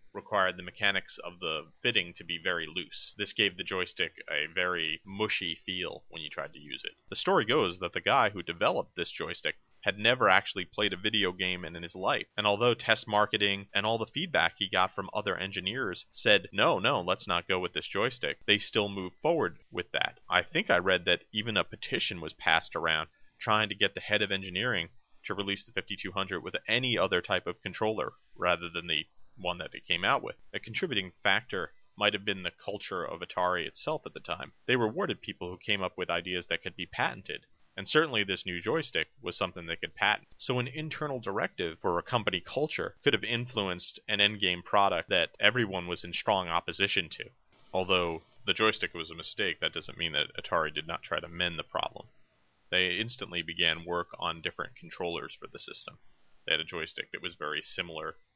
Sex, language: male, English